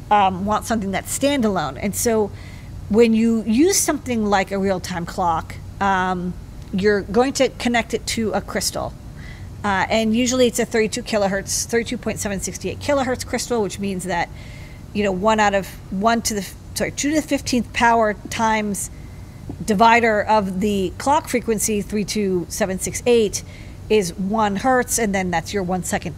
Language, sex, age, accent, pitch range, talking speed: English, female, 40-59, American, 195-235 Hz, 165 wpm